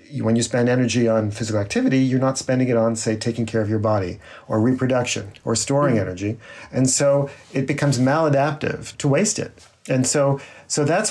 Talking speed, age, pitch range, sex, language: 190 wpm, 40-59, 110-145 Hz, male, English